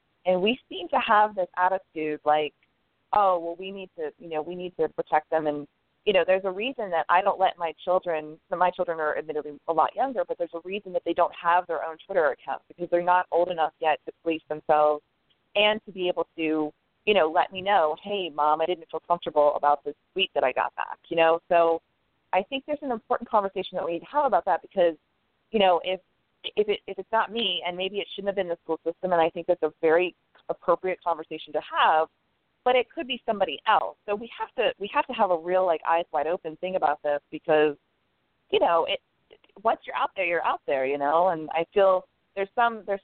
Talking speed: 240 wpm